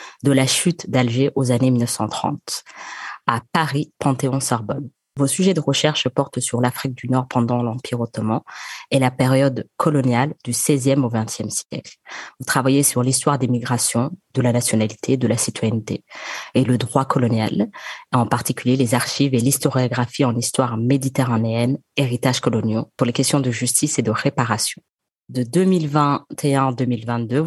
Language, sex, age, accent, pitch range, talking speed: English, female, 20-39, French, 120-140 Hz, 150 wpm